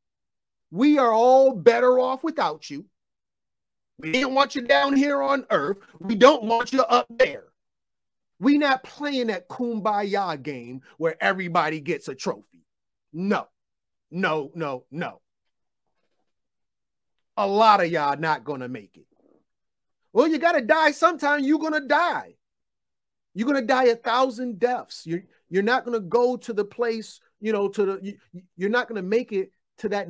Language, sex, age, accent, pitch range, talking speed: English, male, 40-59, American, 160-255 Hz, 155 wpm